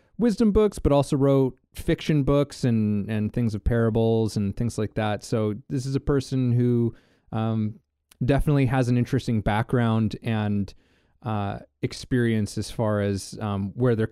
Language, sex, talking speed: English, male, 155 wpm